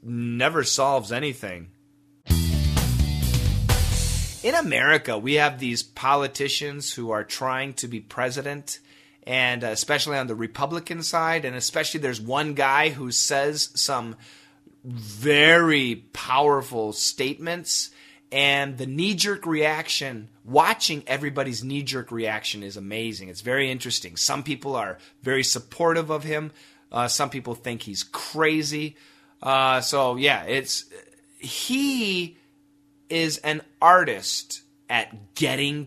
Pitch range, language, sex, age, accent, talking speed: 120-155 Hz, English, male, 30-49, American, 115 wpm